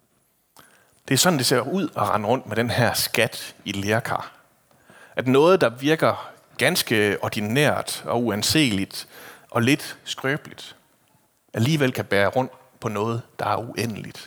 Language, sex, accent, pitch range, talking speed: Danish, male, native, 105-130 Hz, 145 wpm